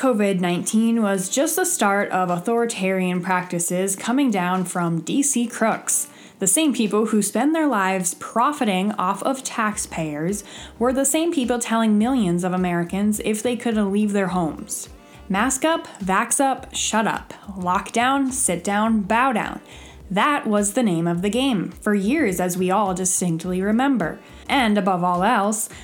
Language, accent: English, American